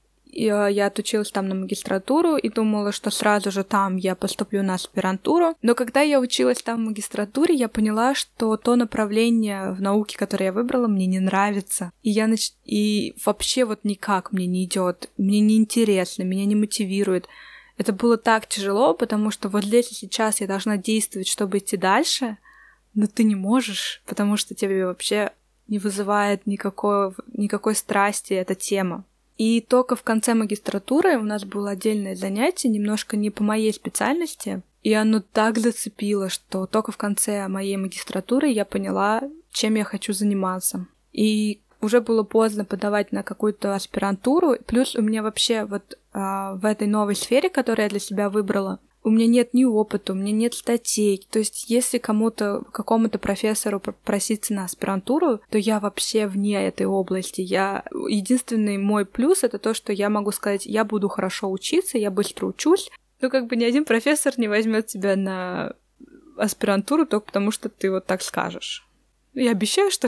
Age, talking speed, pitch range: 20-39, 165 wpm, 200-230 Hz